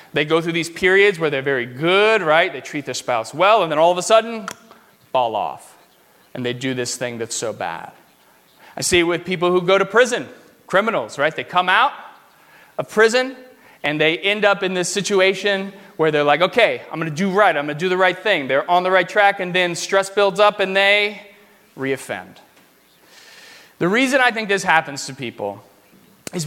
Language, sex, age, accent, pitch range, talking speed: English, male, 30-49, American, 145-195 Hz, 210 wpm